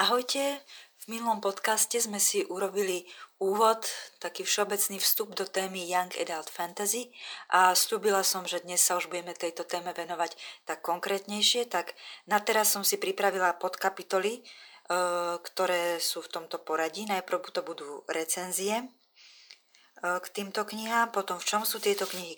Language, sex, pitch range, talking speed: Slovak, female, 175-200 Hz, 145 wpm